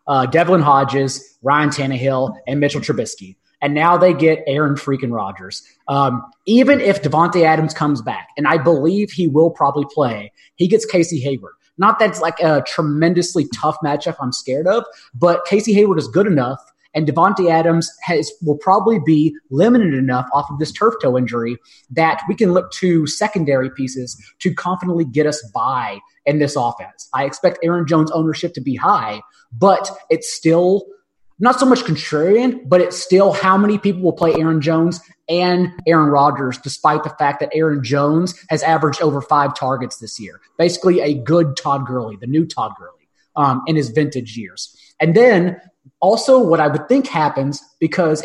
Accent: American